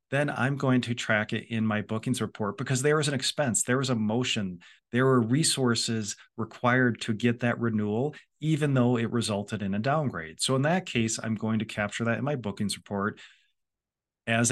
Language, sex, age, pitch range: English, male, 40-59, 105-130 Hz